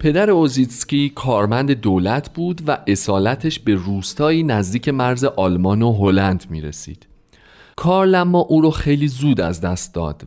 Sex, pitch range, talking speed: male, 95-150 Hz, 135 wpm